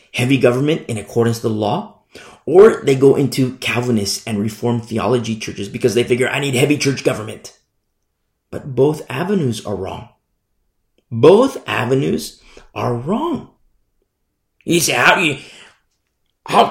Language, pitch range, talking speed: English, 120-165 Hz, 140 wpm